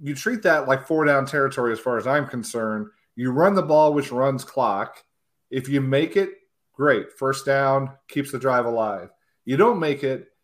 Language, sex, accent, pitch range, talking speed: English, male, American, 120-145 Hz, 195 wpm